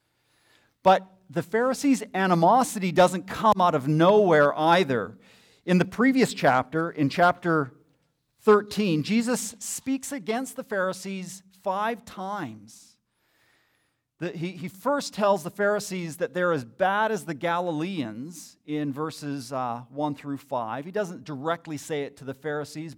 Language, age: English, 40-59